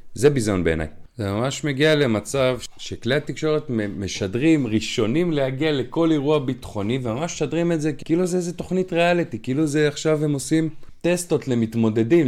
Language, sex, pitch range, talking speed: Hebrew, male, 125-175 Hz, 150 wpm